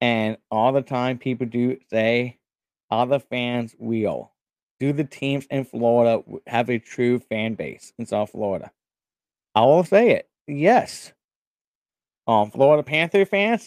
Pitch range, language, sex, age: 120-155 Hz, English, male, 30-49